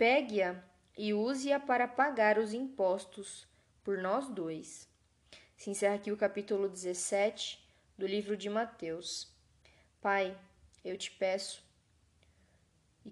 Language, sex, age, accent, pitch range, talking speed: Portuguese, female, 10-29, Brazilian, 180-210 Hz, 120 wpm